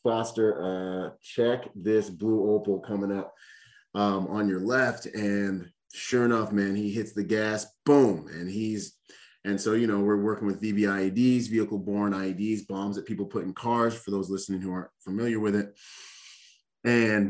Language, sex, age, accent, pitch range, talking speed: English, male, 30-49, American, 100-120 Hz, 165 wpm